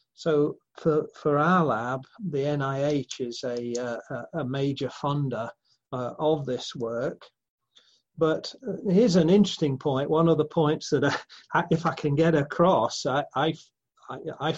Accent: British